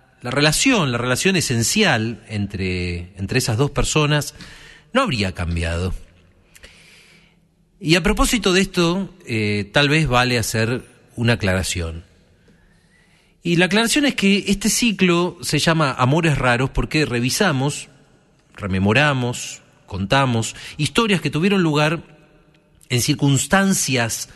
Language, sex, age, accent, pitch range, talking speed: Spanish, male, 40-59, Argentinian, 115-170 Hz, 115 wpm